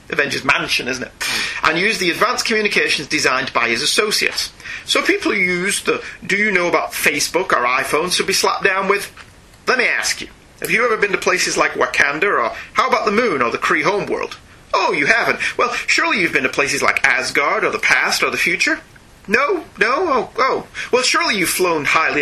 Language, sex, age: English, male, 30-49